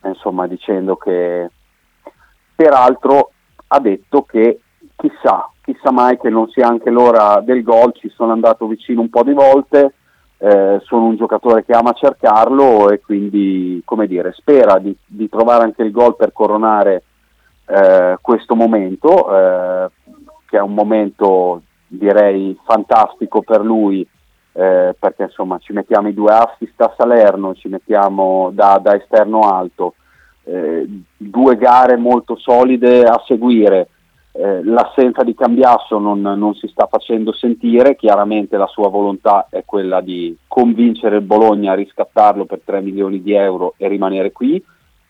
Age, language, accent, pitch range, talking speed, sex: 40-59, Italian, native, 95-120 Hz, 145 wpm, male